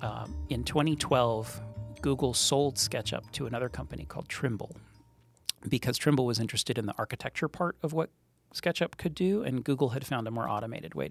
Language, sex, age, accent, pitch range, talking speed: English, male, 40-59, American, 115-150 Hz, 175 wpm